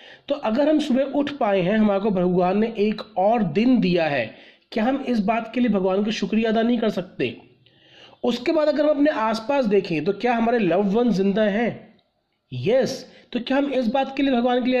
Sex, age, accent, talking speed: male, 40-59, native, 215 wpm